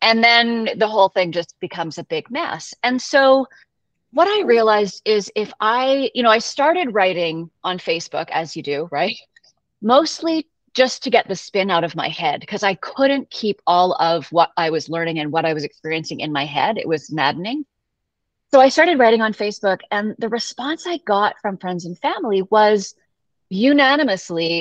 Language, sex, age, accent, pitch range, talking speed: English, female, 30-49, American, 175-245 Hz, 190 wpm